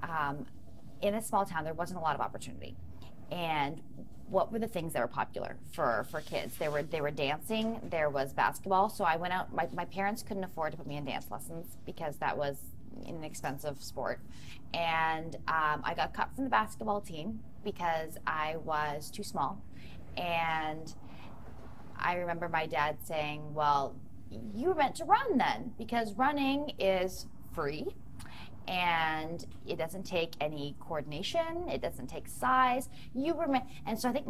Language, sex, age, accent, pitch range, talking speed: English, female, 30-49, American, 150-205 Hz, 170 wpm